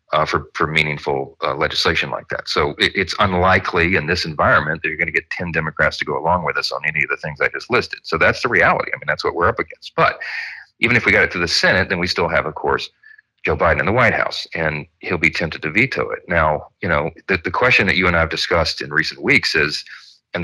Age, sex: 40-59, male